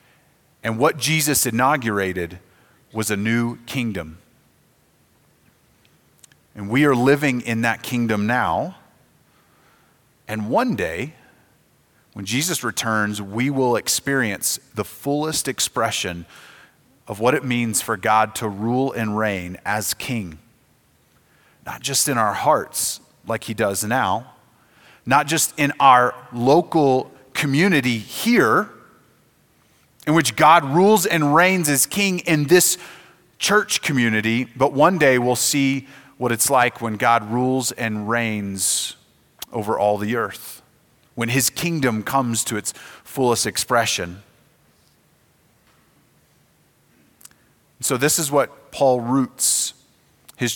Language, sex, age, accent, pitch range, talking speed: English, male, 30-49, American, 115-140 Hz, 120 wpm